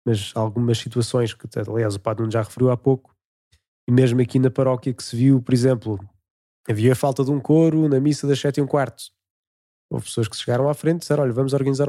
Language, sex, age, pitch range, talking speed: Portuguese, male, 20-39, 115-135 Hz, 220 wpm